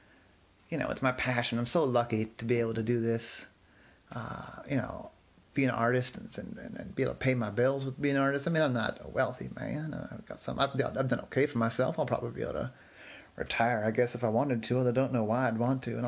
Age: 30-49